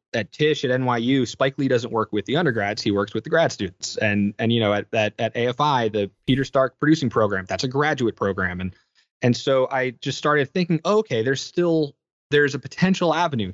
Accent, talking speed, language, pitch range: American, 215 wpm, English, 110-135 Hz